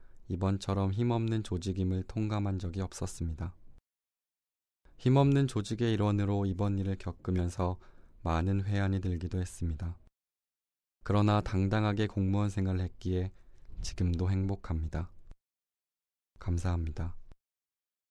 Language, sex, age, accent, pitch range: Korean, male, 20-39, native, 90-105 Hz